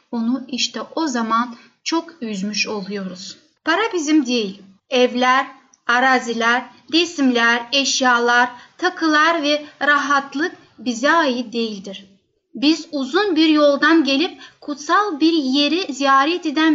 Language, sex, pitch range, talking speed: Turkish, female, 255-310 Hz, 110 wpm